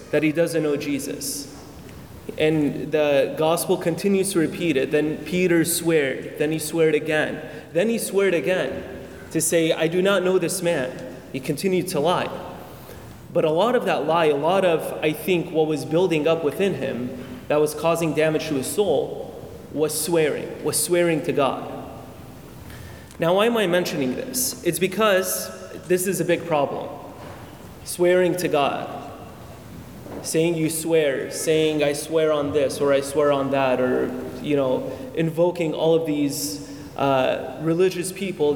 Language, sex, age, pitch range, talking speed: English, male, 30-49, 145-175 Hz, 160 wpm